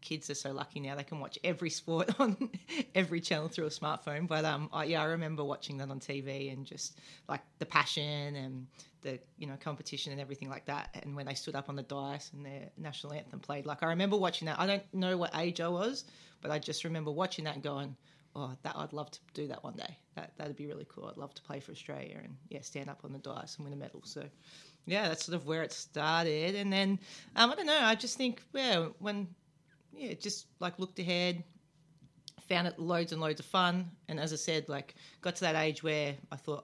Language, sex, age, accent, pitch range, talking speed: English, female, 30-49, Australian, 145-170 Hz, 240 wpm